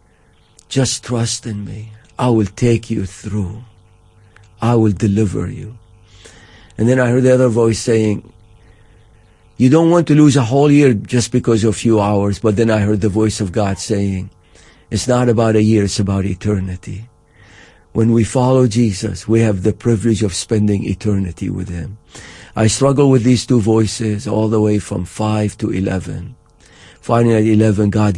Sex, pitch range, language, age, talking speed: male, 105-120 Hz, English, 50-69, 175 wpm